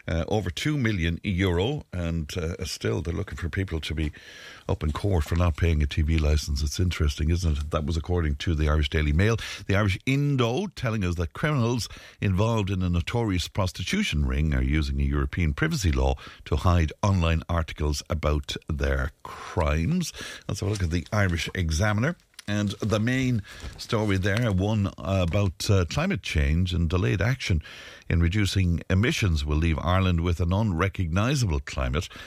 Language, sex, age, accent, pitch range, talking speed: English, male, 60-79, Irish, 75-105 Hz, 170 wpm